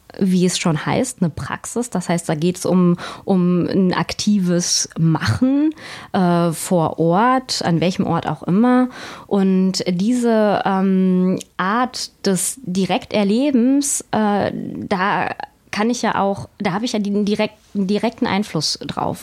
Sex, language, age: female, German, 20-39